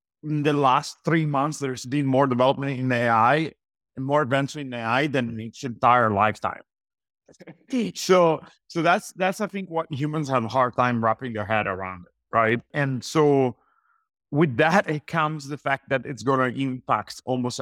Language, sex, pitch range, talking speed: English, male, 115-150 Hz, 175 wpm